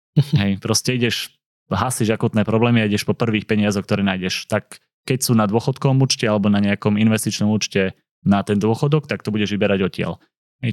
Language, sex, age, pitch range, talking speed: Slovak, male, 20-39, 105-115 Hz, 185 wpm